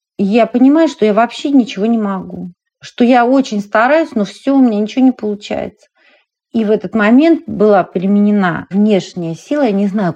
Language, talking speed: Russian, 175 wpm